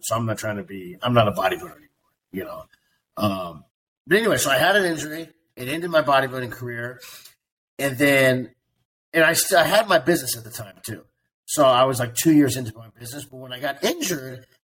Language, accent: English, American